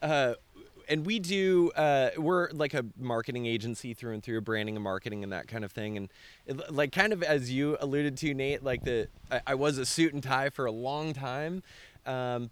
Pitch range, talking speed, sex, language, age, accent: 115-140 Hz, 215 wpm, male, English, 20-39, American